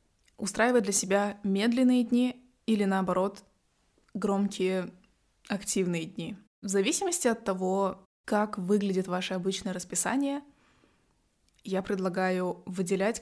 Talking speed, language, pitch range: 100 wpm, Russian, 185-210 Hz